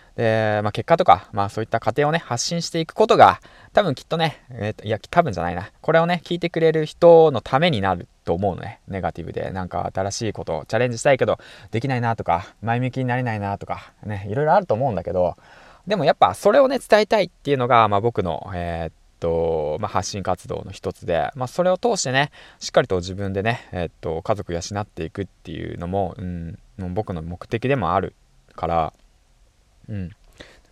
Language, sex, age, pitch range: Japanese, male, 20-39, 90-140 Hz